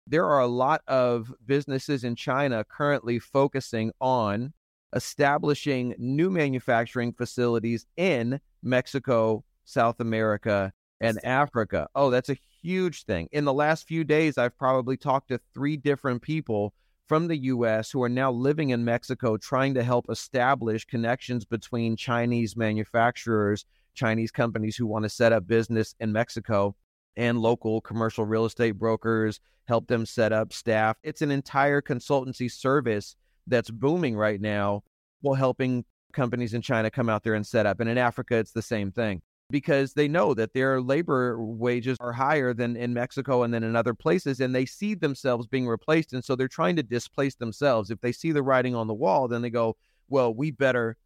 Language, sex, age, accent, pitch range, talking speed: English, male, 30-49, American, 115-135 Hz, 175 wpm